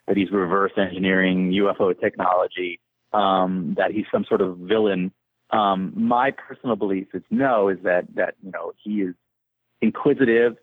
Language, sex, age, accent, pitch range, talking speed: English, male, 30-49, American, 95-110 Hz, 150 wpm